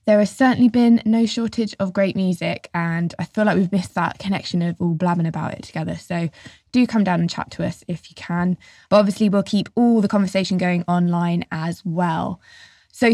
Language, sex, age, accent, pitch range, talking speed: English, female, 20-39, British, 175-200 Hz, 210 wpm